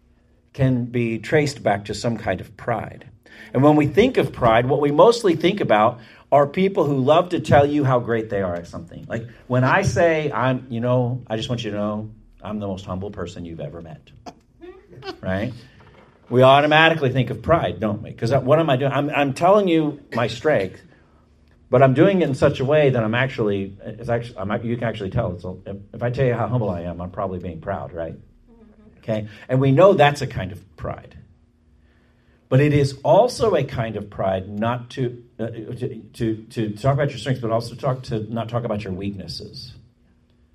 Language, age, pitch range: English, 50-69, 95-130 Hz